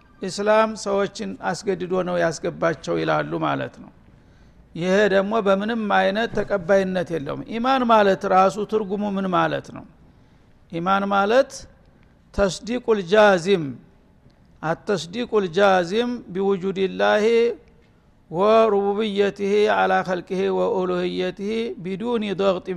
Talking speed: 90 wpm